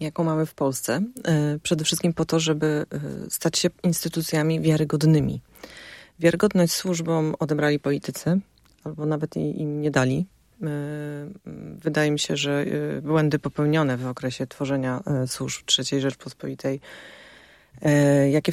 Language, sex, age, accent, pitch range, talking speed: Polish, female, 30-49, native, 140-165 Hz, 115 wpm